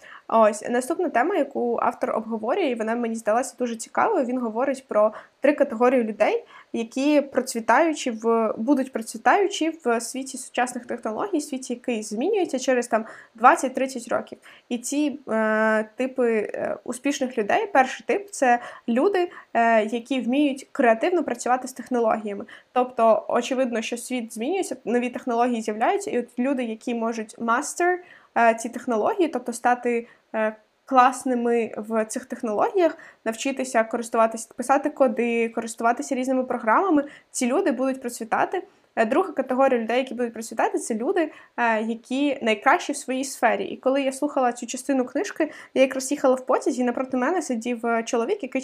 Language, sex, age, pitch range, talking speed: Ukrainian, female, 20-39, 235-280 Hz, 140 wpm